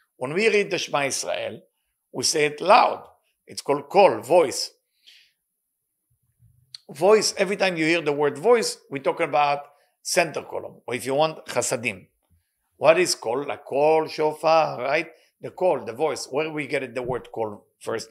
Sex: male